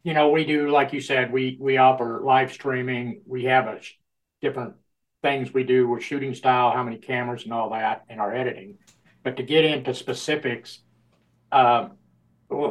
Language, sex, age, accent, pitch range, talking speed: English, male, 60-79, American, 120-135 Hz, 180 wpm